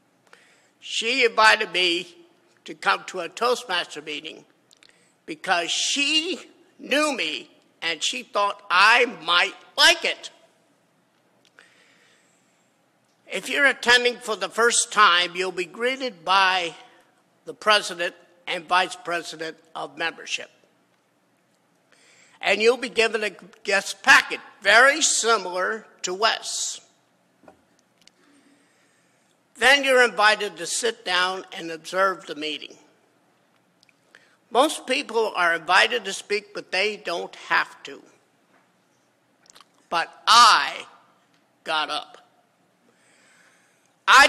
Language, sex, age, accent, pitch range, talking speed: English, male, 50-69, American, 180-245 Hz, 100 wpm